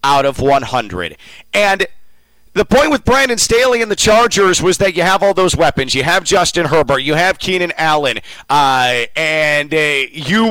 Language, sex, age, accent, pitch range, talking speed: English, male, 40-59, American, 150-200 Hz, 175 wpm